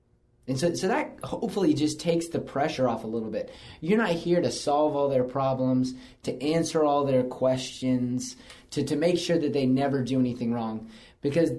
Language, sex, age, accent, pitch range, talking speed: English, male, 30-49, American, 115-150 Hz, 190 wpm